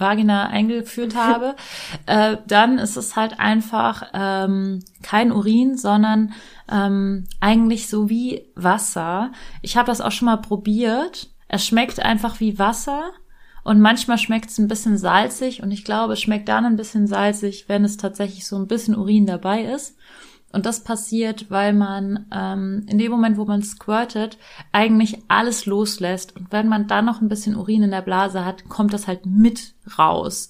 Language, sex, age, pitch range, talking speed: German, female, 30-49, 195-220 Hz, 170 wpm